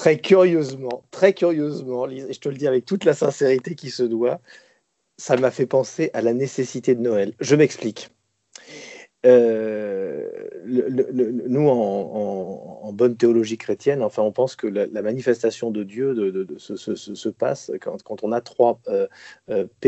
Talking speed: 180 wpm